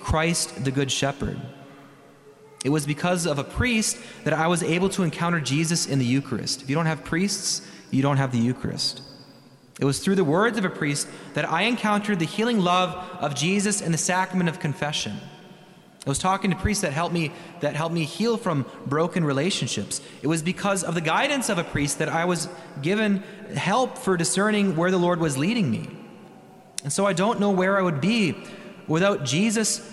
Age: 30-49